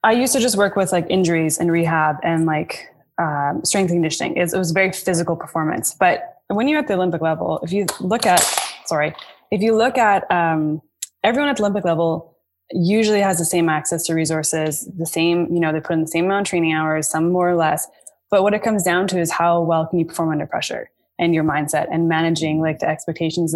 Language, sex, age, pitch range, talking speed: English, female, 20-39, 160-200 Hz, 230 wpm